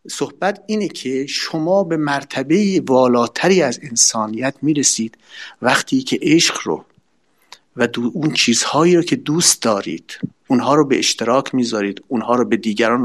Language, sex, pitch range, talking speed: Persian, male, 115-155 Hz, 145 wpm